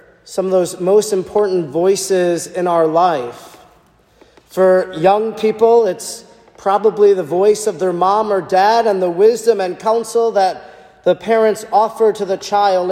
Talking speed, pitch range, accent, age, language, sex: 155 wpm, 165-200 Hz, American, 40-59, English, male